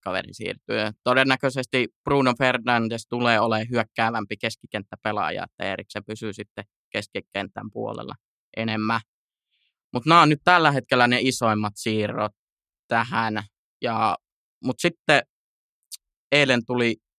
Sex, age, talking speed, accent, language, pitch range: male, 20-39, 110 wpm, native, Finnish, 110-130 Hz